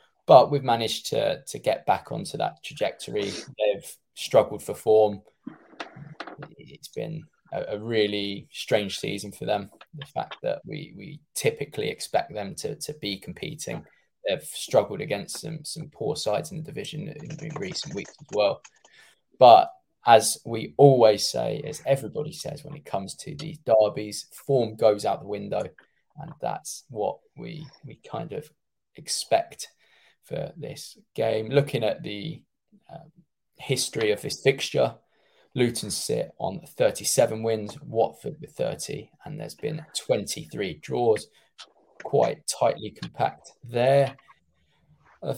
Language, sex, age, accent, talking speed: English, male, 10-29, British, 140 wpm